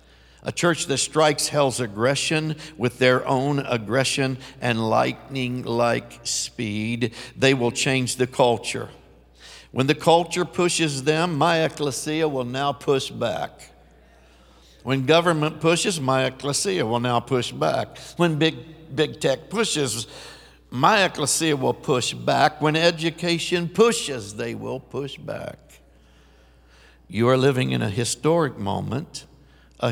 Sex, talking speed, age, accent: male, 125 wpm, 60-79, American